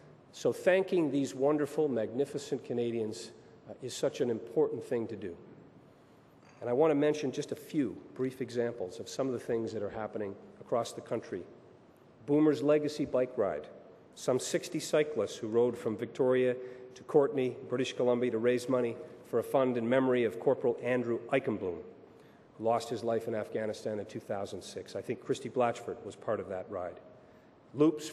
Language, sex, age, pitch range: English, male, 40-59, 125-150 Hz